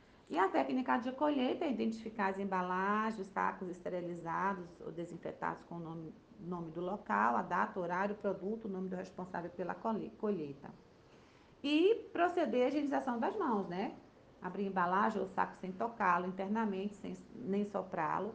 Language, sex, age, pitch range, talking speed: Portuguese, female, 40-59, 180-215 Hz, 140 wpm